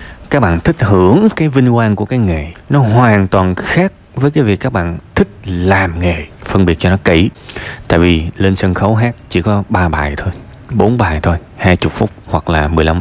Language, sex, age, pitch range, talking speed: Vietnamese, male, 20-39, 90-135 Hz, 215 wpm